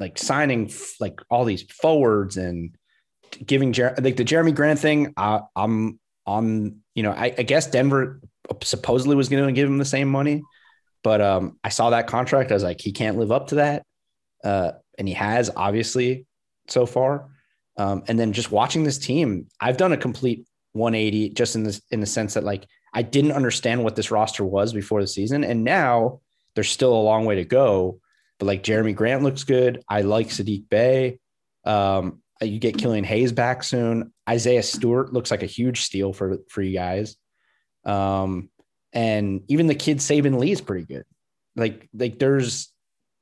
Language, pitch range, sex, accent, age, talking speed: English, 105-130 Hz, male, American, 30-49, 185 wpm